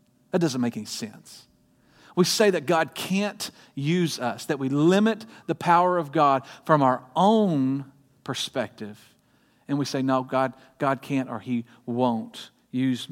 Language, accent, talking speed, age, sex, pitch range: English, American, 155 wpm, 40-59, male, 120-160 Hz